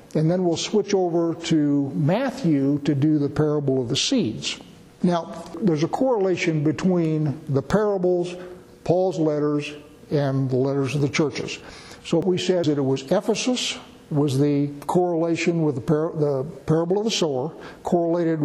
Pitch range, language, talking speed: 150-180 Hz, English, 155 wpm